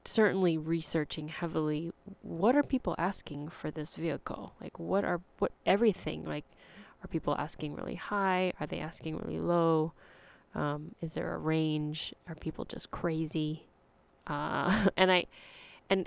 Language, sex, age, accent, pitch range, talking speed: English, female, 20-39, American, 155-185 Hz, 145 wpm